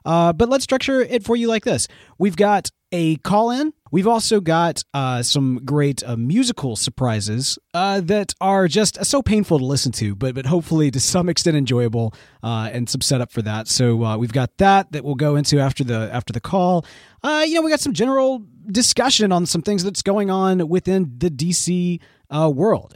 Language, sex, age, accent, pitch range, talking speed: English, male, 30-49, American, 140-210 Hz, 200 wpm